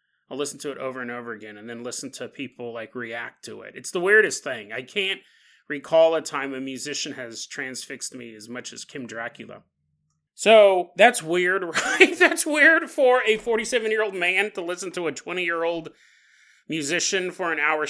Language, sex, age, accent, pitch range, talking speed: English, male, 30-49, American, 145-235 Hz, 185 wpm